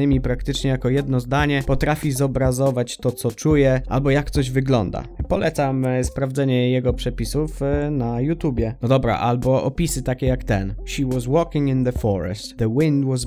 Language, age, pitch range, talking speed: Polish, 20-39, 120-140 Hz, 160 wpm